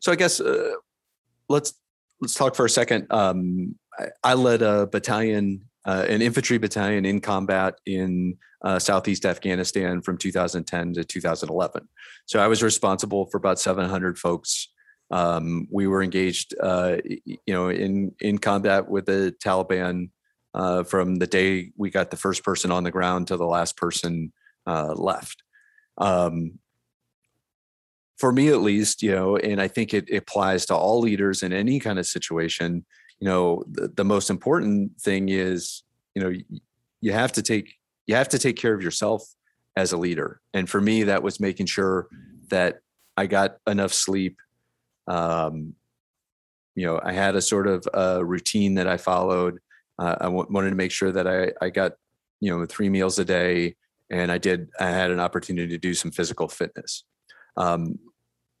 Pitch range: 90-100 Hz